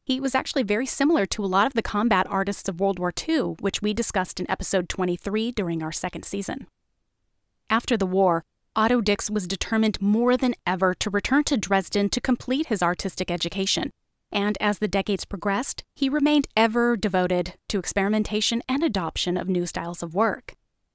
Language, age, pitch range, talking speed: English, 30-49, 190-235 Hz, 180 wpm